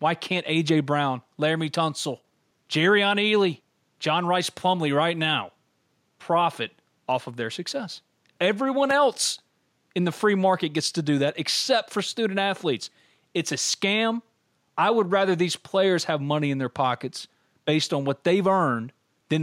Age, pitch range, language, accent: 30-49, 150-205 Hz, English, American